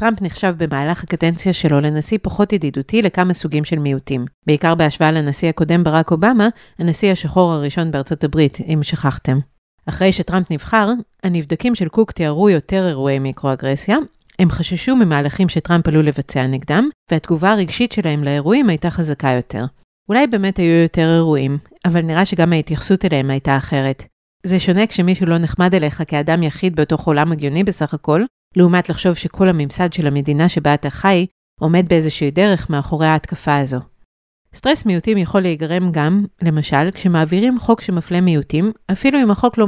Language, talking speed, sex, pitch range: Hebrew, 135 wpm, female, 150-185 Hz